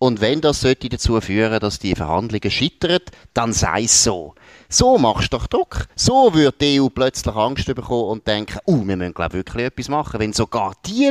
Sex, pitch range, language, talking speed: male, 100-150 Hz, German, 205 wpm